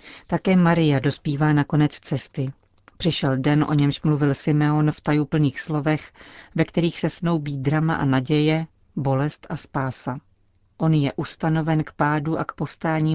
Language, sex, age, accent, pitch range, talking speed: Czech, female, 40-59, native, 140-160 Hz, 150 wpm